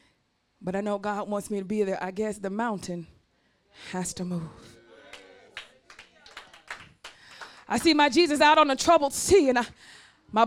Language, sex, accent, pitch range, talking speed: English, female, American, 225-340 Hz, 160 wpm